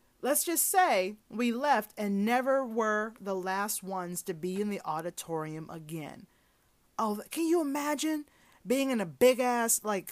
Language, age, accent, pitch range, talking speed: English, 30-49, American, 210-275 Hz, 160 wpm